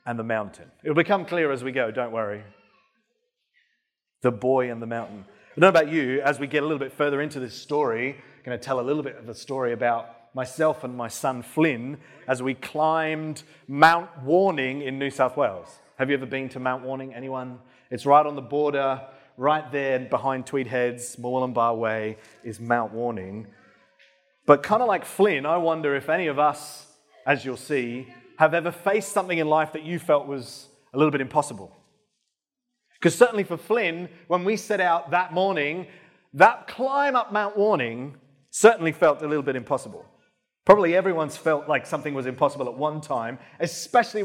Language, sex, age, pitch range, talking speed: English, male, 30-49, 130-170 Hz, 190 wpm